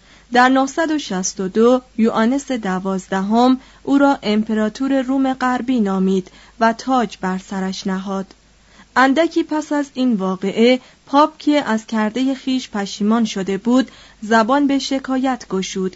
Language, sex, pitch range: Persian, female, 200-255 Hz